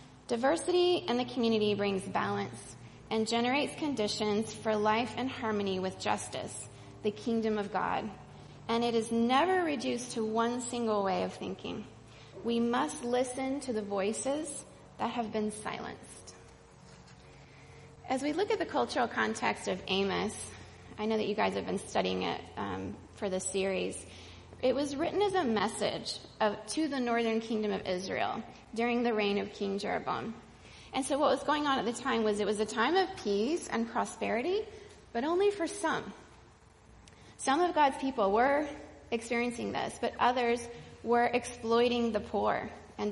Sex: female